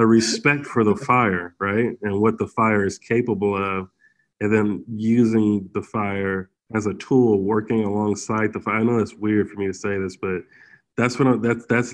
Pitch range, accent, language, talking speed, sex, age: 100-115 Hz, American, English, 200 wpm, male, 20-39